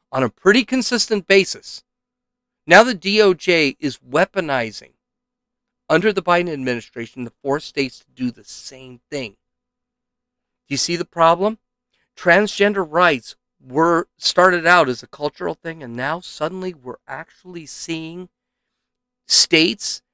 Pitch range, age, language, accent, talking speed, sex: 140-210 Hz, 50-69, English, American, 130 wpm, male